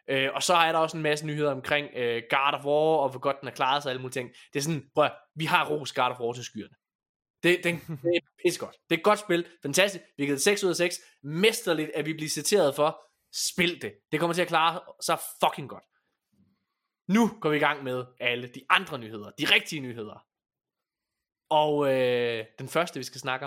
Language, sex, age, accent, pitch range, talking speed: Danish, male, 20-39, native, 140-180 Hz, 240 wpm